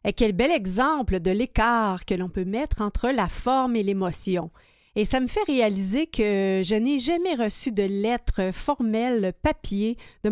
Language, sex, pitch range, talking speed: French, female, 195-250 Hz, 170 wpm